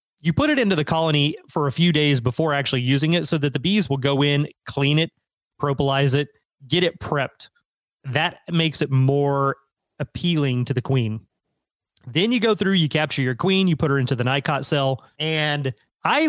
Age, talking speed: 30-49, 195 wpm